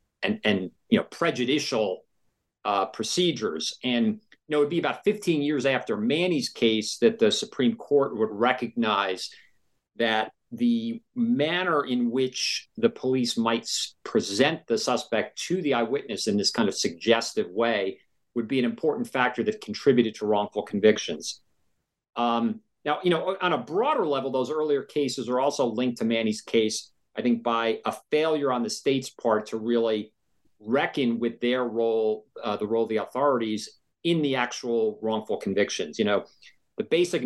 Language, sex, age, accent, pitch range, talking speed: English, male, 50-69, American, 110-140 Hz, 165 wpm